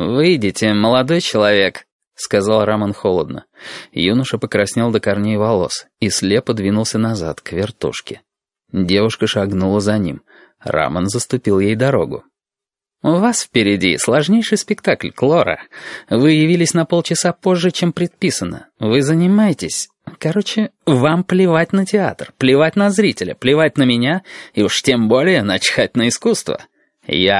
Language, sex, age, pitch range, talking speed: Russian, male, 30-49, 110-160 Hz, 130 wpm